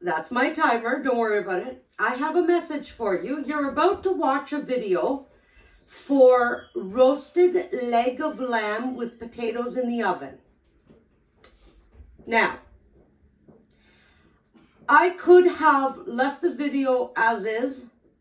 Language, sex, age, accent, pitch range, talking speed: English, female, 50-69, American, 230-290 Hz, 125 wpm